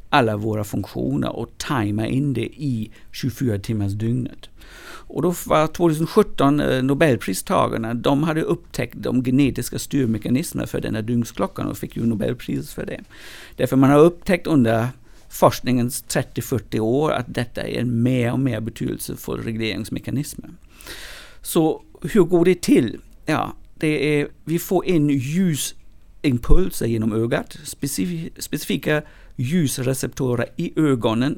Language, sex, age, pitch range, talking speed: Swedish, male, 50-69, 115-150 Hz, 130 wpm